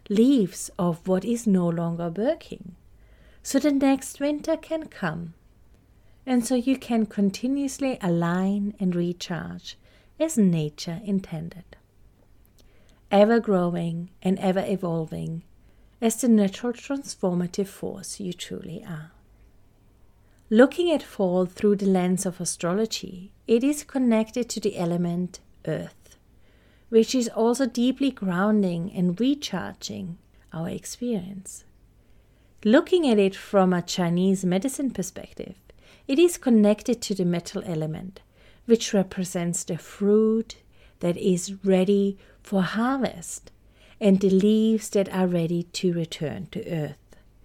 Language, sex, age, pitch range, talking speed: English, female, 40-59, 170-220 Hz, 120 wpm